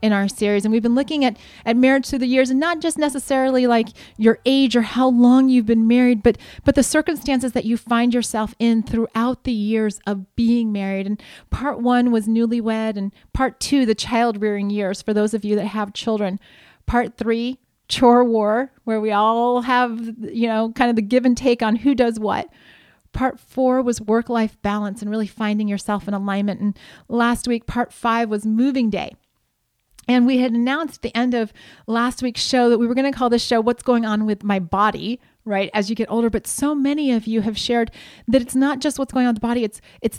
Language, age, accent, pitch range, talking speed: English, 30-49, American, 210-245 Hz, 220 wpm